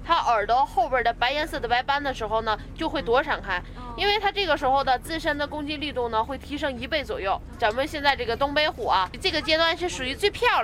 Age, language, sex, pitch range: 20-39, Chinese, female, 240-315 Hz